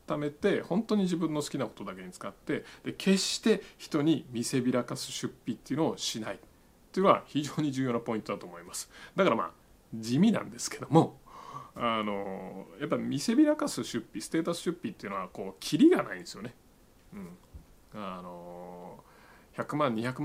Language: Japanese